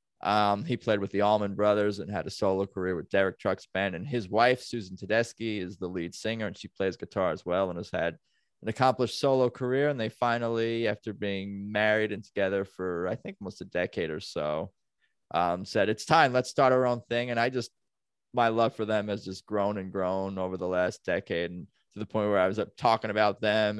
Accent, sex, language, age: American, male, English, 20-39